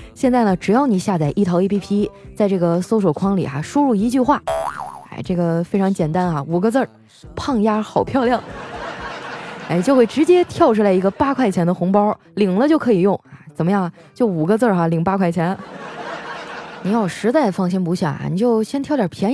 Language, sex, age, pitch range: Chinese, female, 20-39, 175-230 Hz